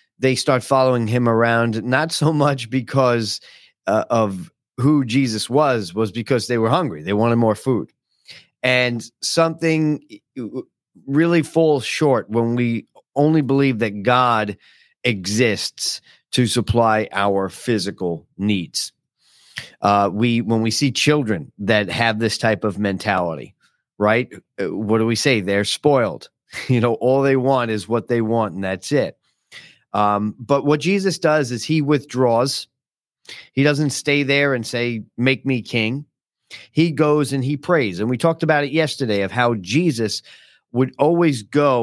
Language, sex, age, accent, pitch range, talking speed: English, male, 40-59, American, 105-135 Hz, 150 wpm